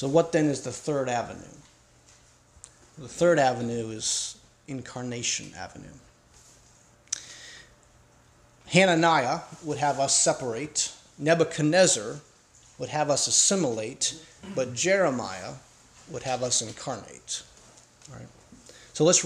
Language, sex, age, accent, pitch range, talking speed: English, male, 40-59, American, 140-170 Hz, 95 wpm